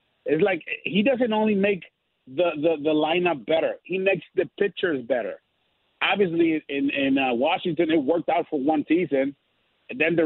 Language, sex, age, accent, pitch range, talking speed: English, male, 50-69, American, 150-205 Hz, 175 wpm